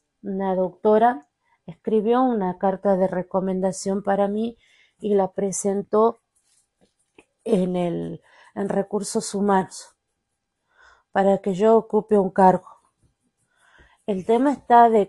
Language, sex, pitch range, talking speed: Spanish, female, 185-220 Hz, 105 wpm